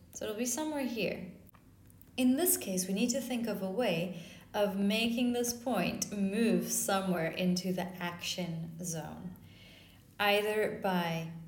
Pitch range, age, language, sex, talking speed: 175-245 Hz, 30-49, Portuguese, female, 140 wpm